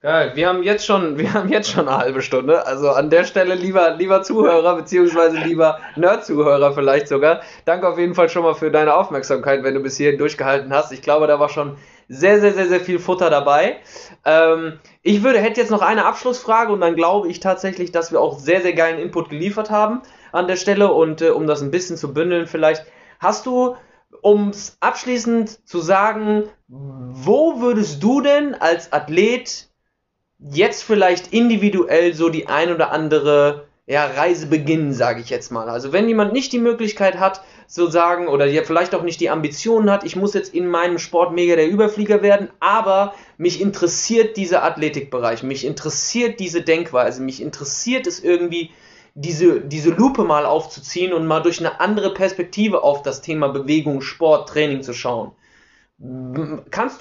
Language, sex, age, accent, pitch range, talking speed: German, male, 20-39, German, 150-195 Hz, 180 wpm